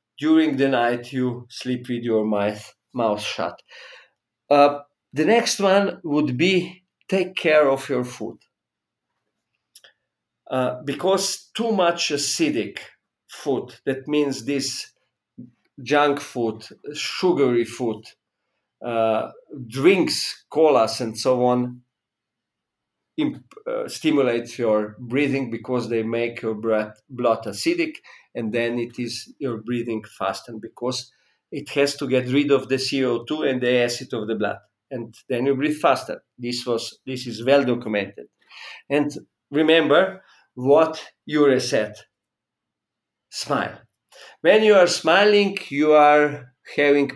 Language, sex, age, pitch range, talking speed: English, male, 40-59, 120-175 Hz, 125 wpm